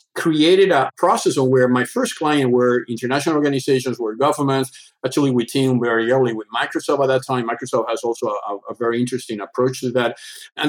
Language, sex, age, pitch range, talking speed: English, male, 50-69, 125-170 Hz, 185 wpm